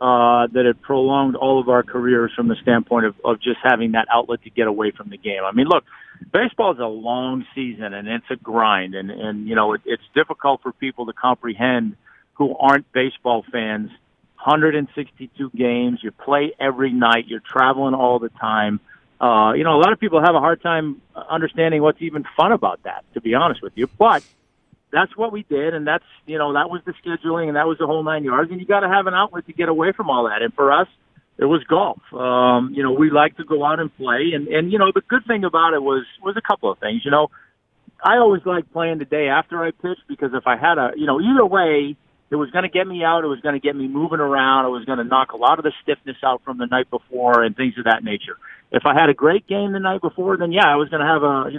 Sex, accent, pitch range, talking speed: male, American, 125-165 Hz, 255 wpm